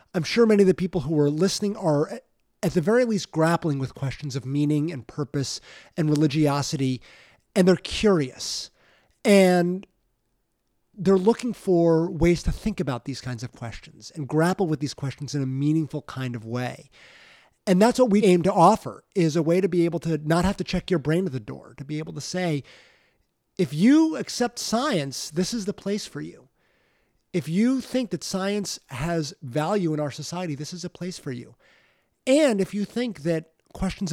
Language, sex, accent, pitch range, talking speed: English, male, American, 150-190 Hz, 190 wpm